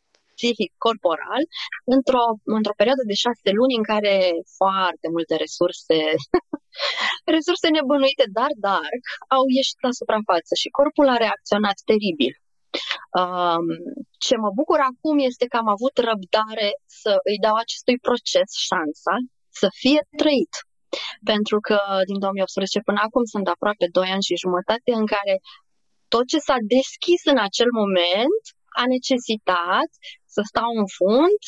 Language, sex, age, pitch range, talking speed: Romanian, female, 20-39, 195-280 Hz, 135 wpm